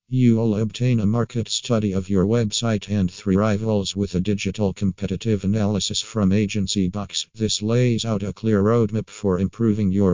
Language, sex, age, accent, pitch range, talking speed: English, male, 50-69, American, 95-110 Hz, 165 wpm